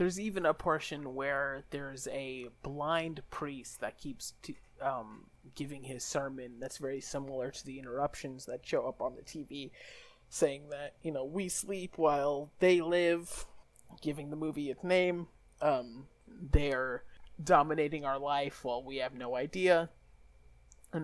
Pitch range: 125-155 Hz